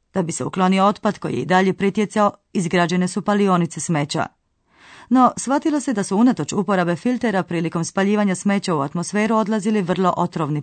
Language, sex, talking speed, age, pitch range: Croatian, female, 170 wpm, 30-49, 170-210 Hz